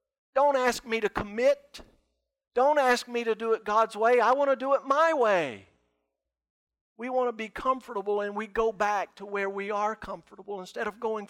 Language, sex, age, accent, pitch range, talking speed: English, male, 50-69, American, 195-235 Hz, 195 wpm